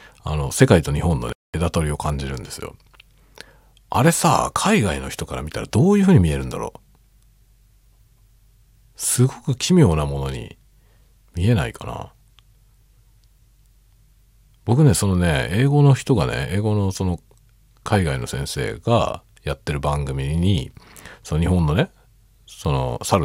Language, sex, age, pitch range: Japanese, male, 40-59, 85-120 Hz